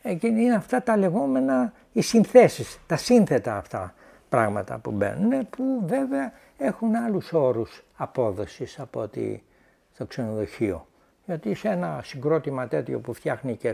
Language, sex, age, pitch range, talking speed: Greek, male, 60-79, 145-230 Hz, 120 wpm